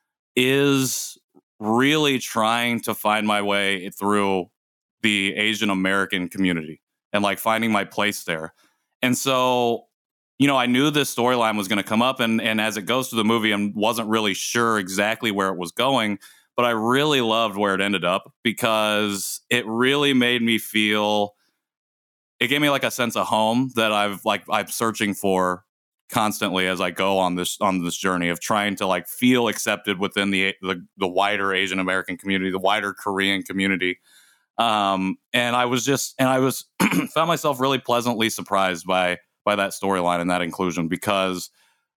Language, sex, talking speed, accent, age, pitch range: English, male, 175 wpm, American, 30-49, 95-125 Hz